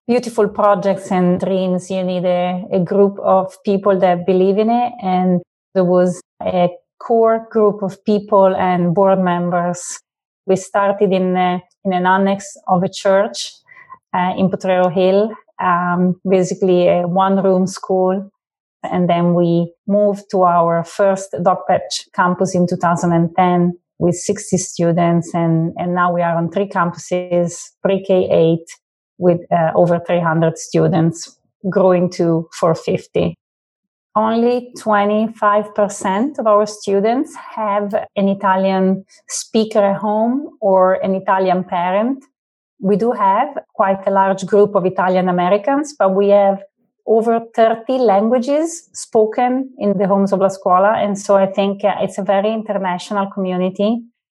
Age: 30-49